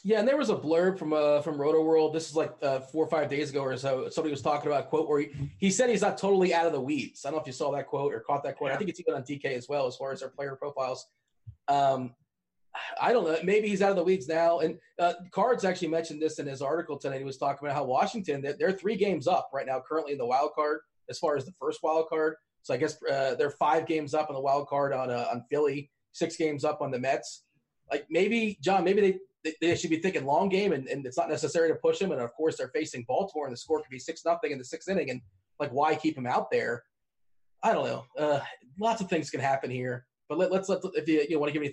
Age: 30-49